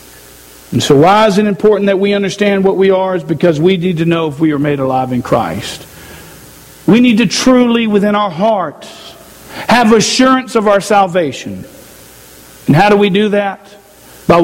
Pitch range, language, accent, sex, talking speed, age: 155-215 Hz, English, American, male, 185 wpm, 50-69